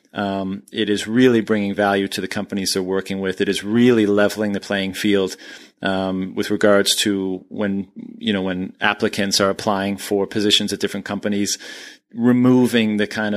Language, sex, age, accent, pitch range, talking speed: English, male, 30-49, American, 100-115 Hz, 170 wpm